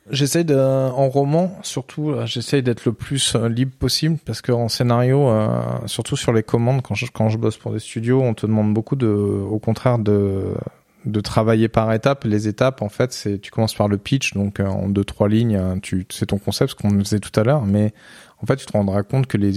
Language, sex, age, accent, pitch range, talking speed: French, male, 20-39, French, 100-120 Hz, 225 wpm